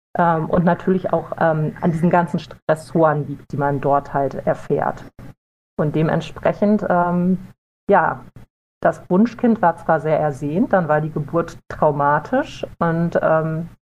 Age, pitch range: 40-59, 155-195 Hz